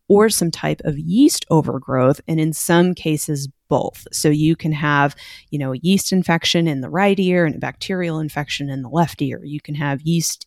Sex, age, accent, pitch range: female, 30-49, American, 140-165 Hz